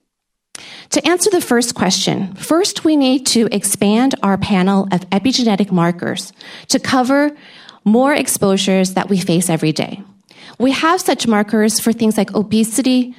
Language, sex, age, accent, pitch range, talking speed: English, female, 40-59, American, 190-240 Hz, 145 wpm